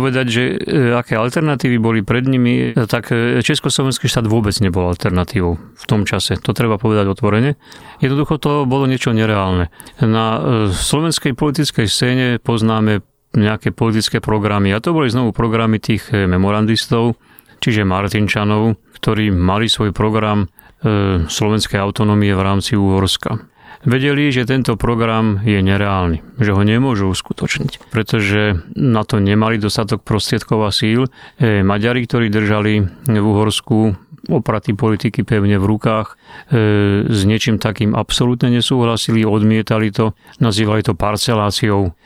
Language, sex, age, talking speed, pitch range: Slovak, male, 30-49, 125 wpm, 105-125 Hz